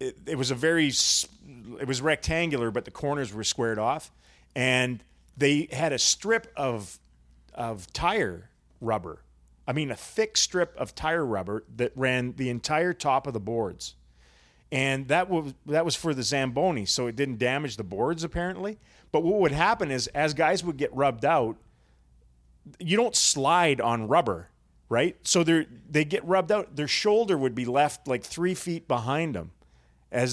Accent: American